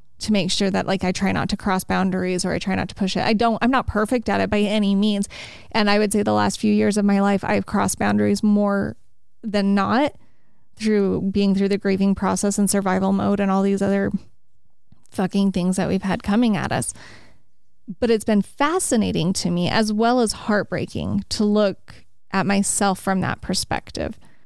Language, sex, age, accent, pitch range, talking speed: English, female, 20-39, American, 190-215 Hz, 205 wpm